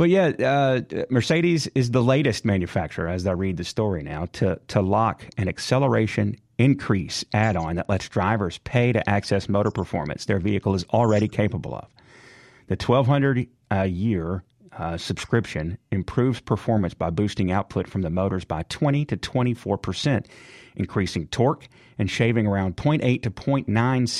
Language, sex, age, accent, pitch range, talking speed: English, male, 40-59, American, 95-125 Hz, 155 wpm